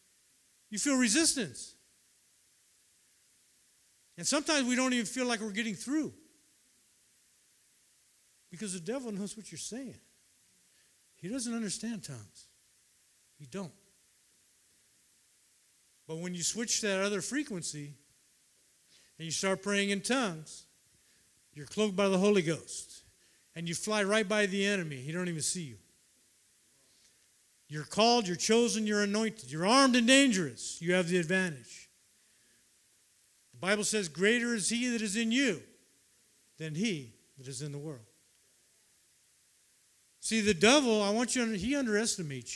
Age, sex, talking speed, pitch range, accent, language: 50-69, male, 135 wpm, 155-220 Hz, American, English